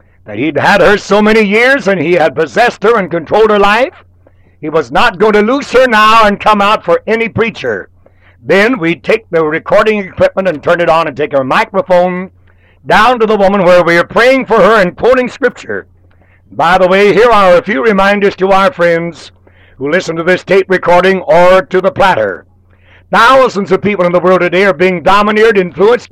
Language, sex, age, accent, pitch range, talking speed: English, male, 60-79, American, 160-215 Hz, 205 wpm